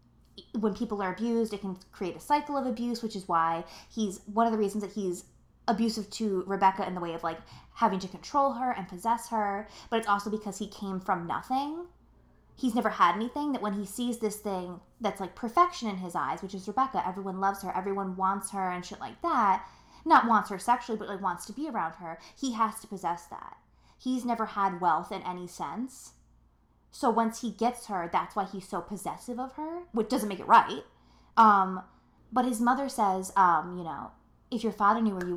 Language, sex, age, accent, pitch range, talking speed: English, female, 20-39, American, 185-230 Hz, 215 wpm